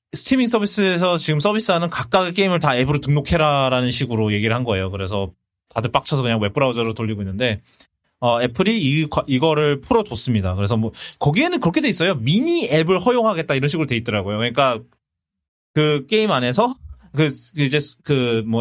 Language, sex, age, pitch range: Korean, male, 20-39, 115-170 Hz